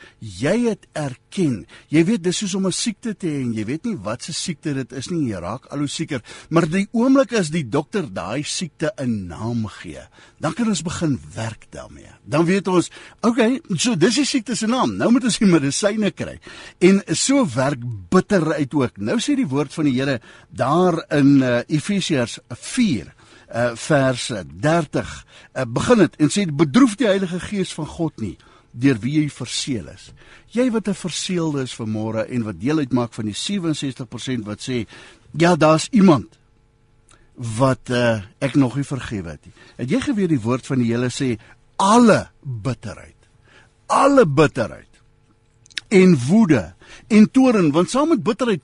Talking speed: 170 wpm